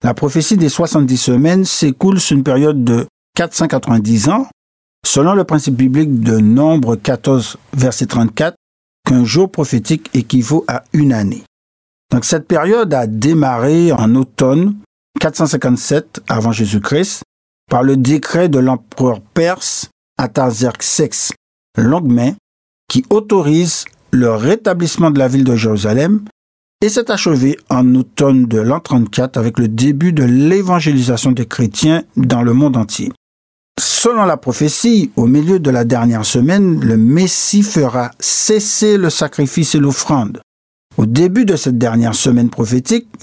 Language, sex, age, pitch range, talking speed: French, male, 60-79, 120-165 Hz, 135 wpm